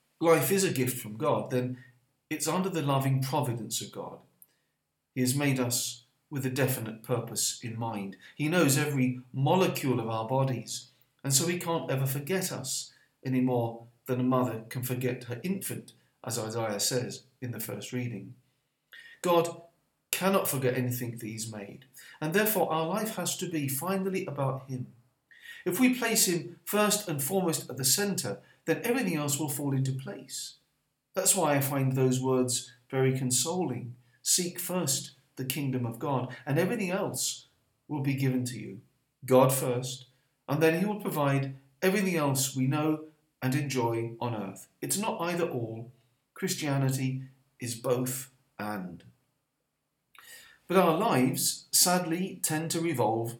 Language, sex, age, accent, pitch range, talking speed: English, male, 40-59, British, 125-165 Hz, 155 wpm